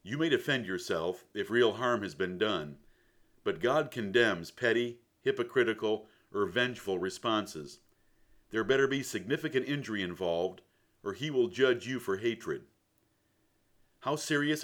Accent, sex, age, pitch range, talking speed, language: American, male, 50-69, 110-145 Hz, 135 wpm, English